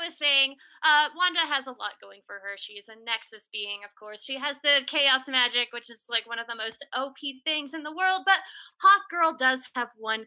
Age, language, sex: 20-39, English, female